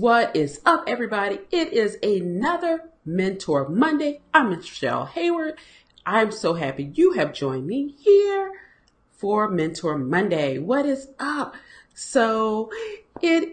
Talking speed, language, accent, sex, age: 125 wpm, English, American, female, 40-59